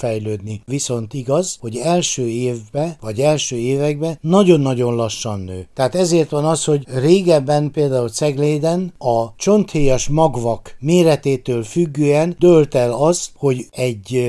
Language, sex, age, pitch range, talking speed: Hungarian, male, 60-79, 120-155 Hz, 125 wpm